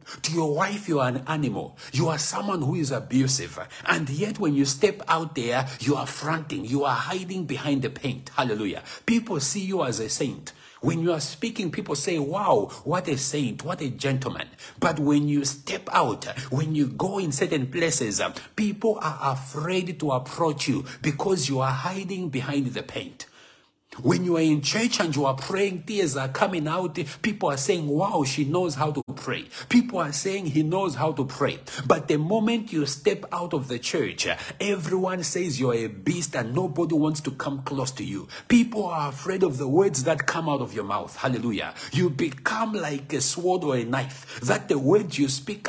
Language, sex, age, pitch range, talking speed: English, male, 60-79, 140-180 Hz, 200 wpm